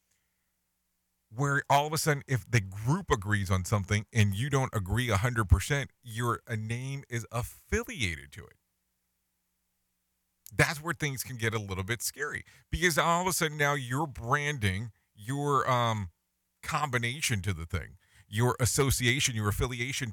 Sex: male